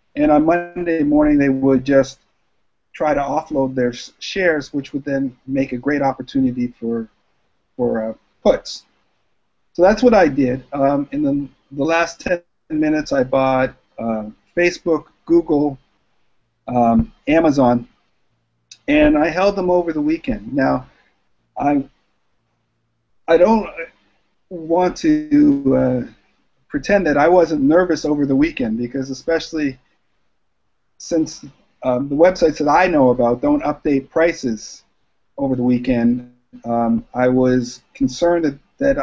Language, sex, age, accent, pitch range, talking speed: English, male, 50-69, American, 130-170 Hz, 130 wpm